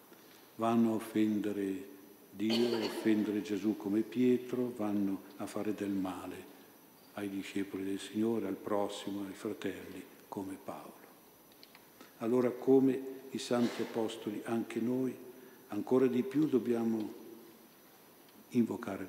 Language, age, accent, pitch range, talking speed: Italian, 50-69, native, 105-120 Hz, 115 wpm